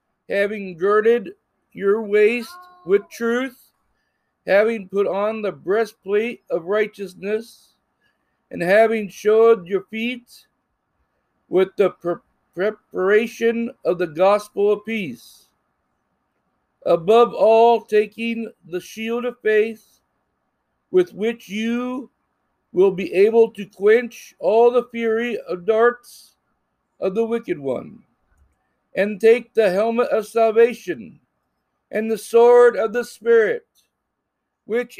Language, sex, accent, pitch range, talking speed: English, male, American, 210-240 Hz, 110 wpm